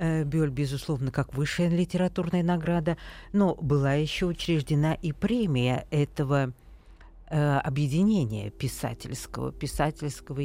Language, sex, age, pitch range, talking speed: Russian, female, 50-69, 130-155 Hz, 90 wpm